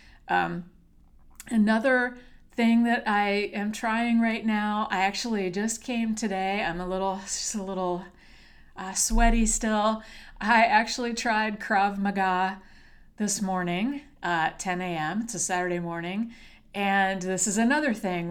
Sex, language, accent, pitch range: female, English, American, 185-225 Hz